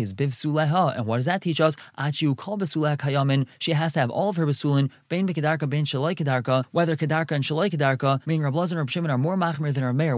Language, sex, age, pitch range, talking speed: English, male, 20-39, 135-165 Hz, 170 wpm